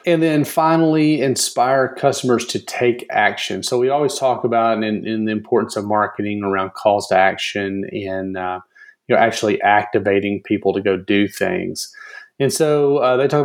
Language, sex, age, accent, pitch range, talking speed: English, male, 30-49, American, 105-135 Hz, 175 wpm